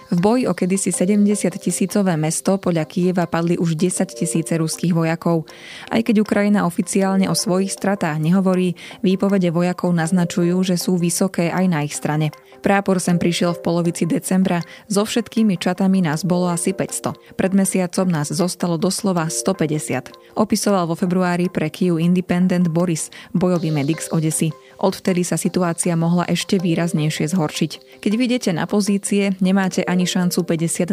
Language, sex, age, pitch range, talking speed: Slovak, female, 20-39, 165-195 Hz, 150 wpm